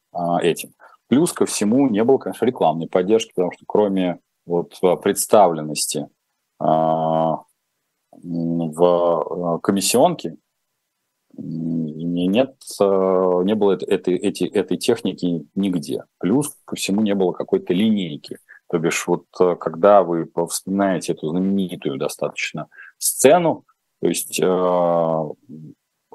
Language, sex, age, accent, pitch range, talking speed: Russian, male, 30-49, native, 85-100 Hz, 90 wpm